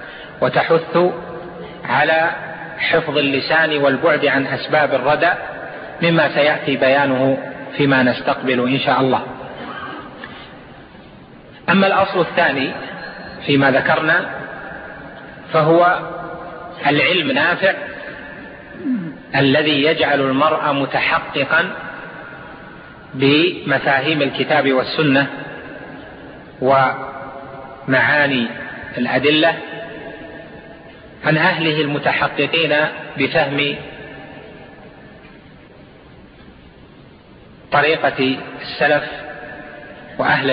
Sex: male